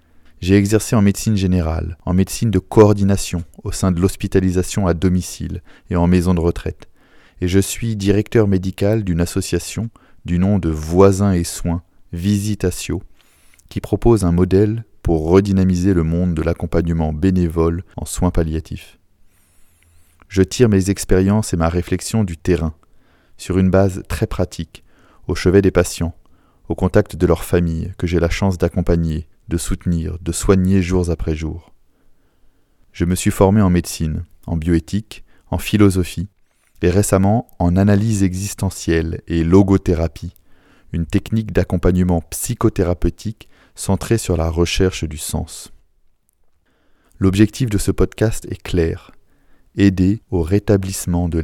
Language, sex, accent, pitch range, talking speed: French, male, French, 85-100 Hz, 140 wpm